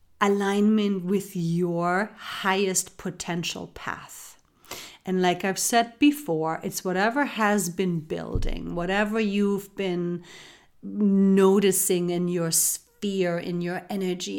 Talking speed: 110 wpm